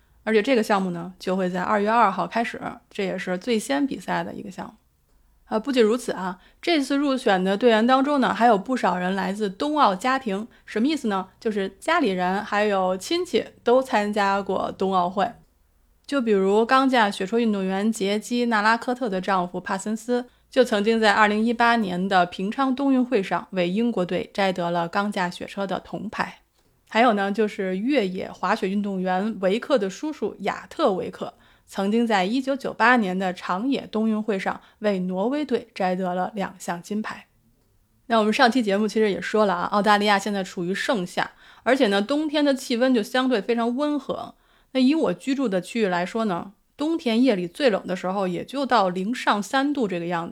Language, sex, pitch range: Chinese, female, 190-245 Hz